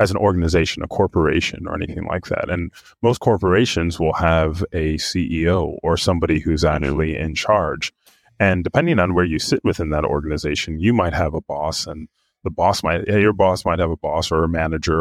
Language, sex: English, male